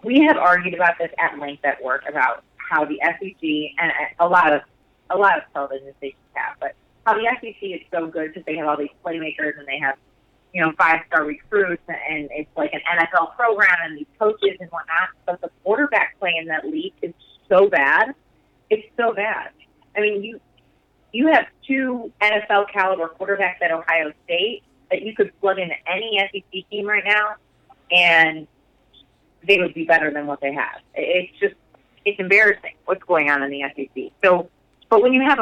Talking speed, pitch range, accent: 190 wpm, 165-215 Hz, American